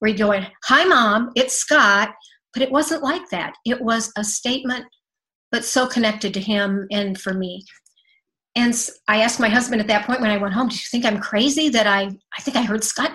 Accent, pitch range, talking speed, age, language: American, 210-255 Hz, 215 wpm, 50-69, English